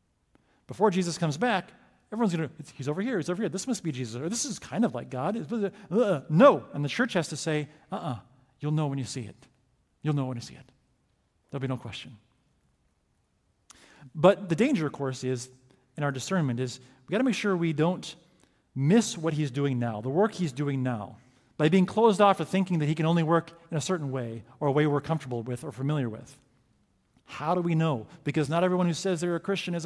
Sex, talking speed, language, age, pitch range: male, 225 wpm, English, 40-59, 135-185 Hz